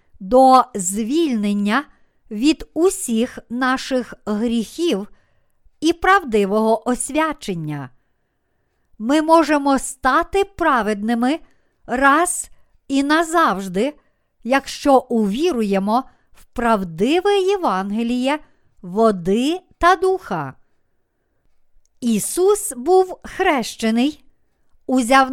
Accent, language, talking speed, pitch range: native, Ukrainian, 65 wpm, 225-310 Hz